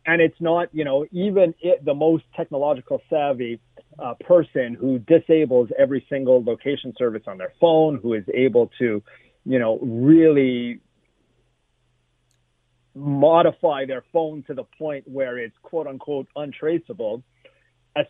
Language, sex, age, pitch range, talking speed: English, male, 40-59, 125-165 Hz, 130 wpm